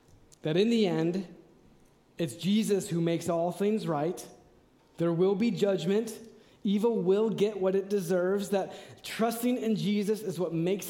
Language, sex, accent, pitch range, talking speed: English, male, American, 160-205 Hz, 155 wpm